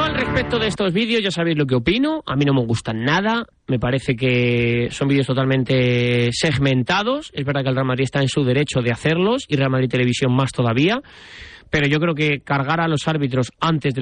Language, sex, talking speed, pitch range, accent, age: Spanish, male, 220 wpm, 130-190 Hz, Spanish, 20-39